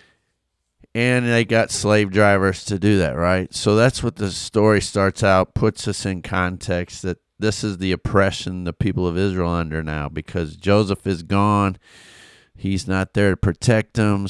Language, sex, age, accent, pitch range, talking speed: English, male, 40-59, American, 90-110 Hz, 175 wpm